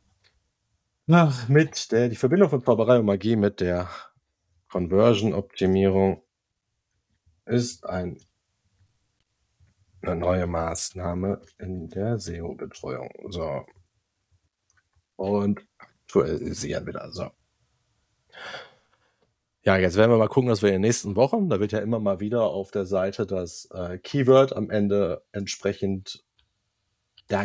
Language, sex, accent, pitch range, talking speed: German, male, German, 95-115 Hz, 115 wpm